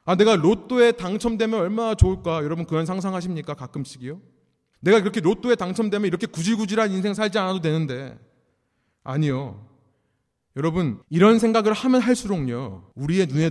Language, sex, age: Korean, male, 30-49